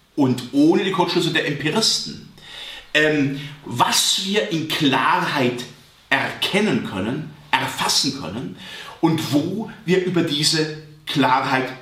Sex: male